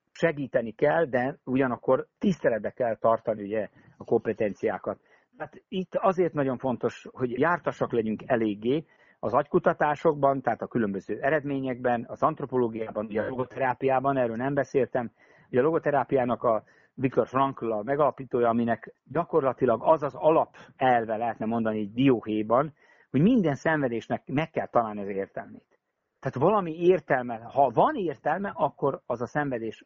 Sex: male